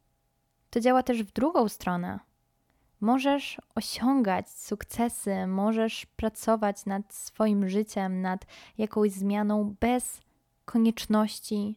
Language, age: Polish, 10-29